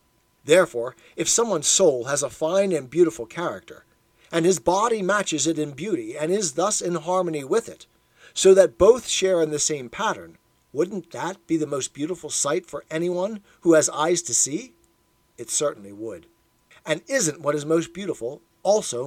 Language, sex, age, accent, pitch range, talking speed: English, male, 50-69, American, 150-195 Hz, 175 wpm